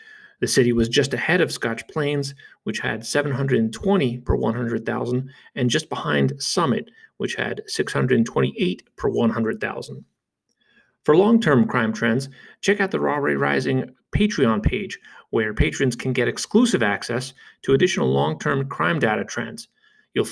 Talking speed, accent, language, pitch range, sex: 140 wpm, American, English, 110-150 Hz, male